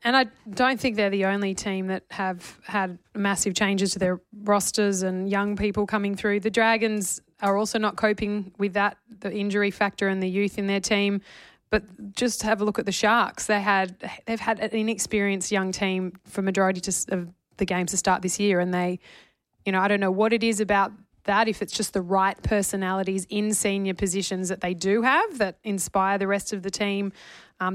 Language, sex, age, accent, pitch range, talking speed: English, female, 20-39, Australian, 190-210 Hz, 210 wpm